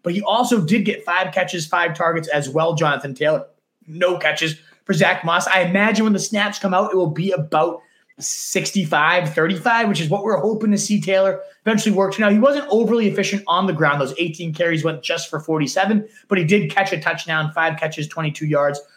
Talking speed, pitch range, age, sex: 210 wpm, 160-205 Hz, 30-49, male